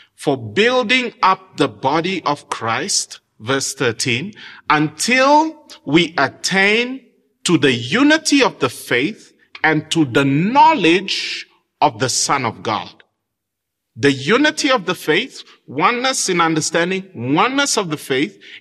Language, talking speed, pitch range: English, 125 wpm, 150-225 Hz